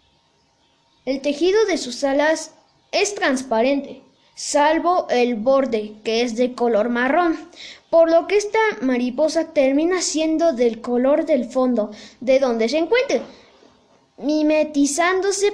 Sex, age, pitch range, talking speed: female, 20-39, 250-335 Hz, 120 wpm